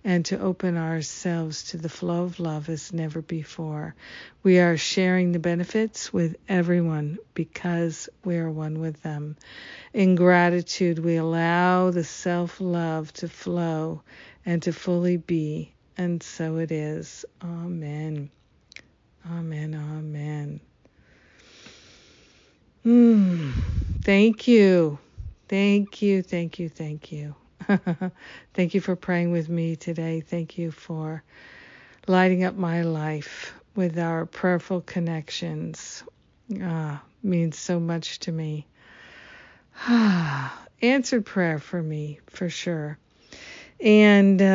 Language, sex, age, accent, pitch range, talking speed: English, female, 50-69, American, 165-185 Hz, 115 wpm